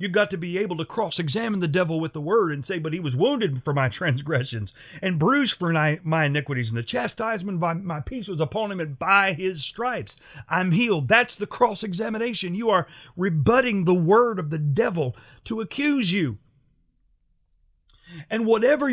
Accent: American